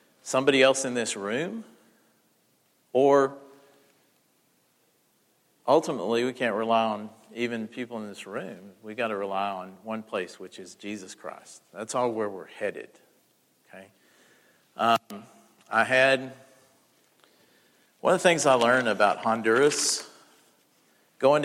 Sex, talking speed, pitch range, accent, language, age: male, 125 wpm, 110-135 Hz, American, English, 50-69